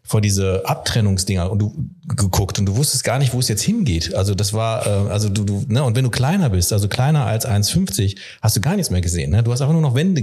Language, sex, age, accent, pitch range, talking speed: German, male, 40-59, German, 105-125 Hz, 260 wpm